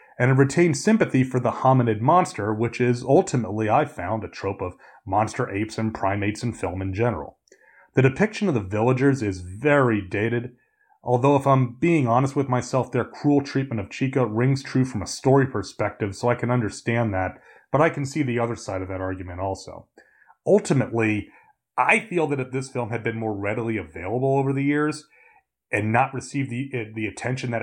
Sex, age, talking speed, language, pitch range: male, 30-49, 190 wpm, English, 110-140 Hz